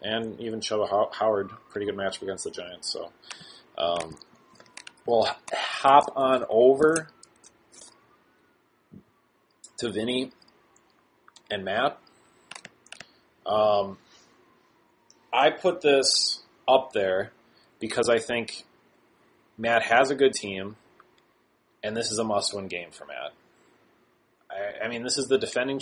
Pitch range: 100-130 Hz